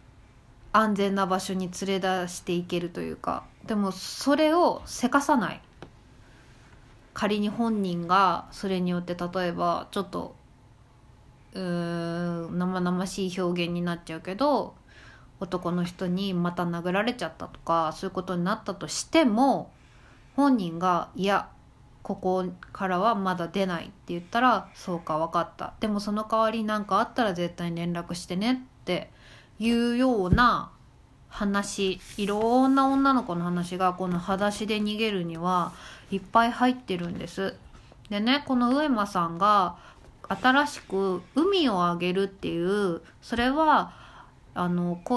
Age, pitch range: 20-39, 175-225 Hz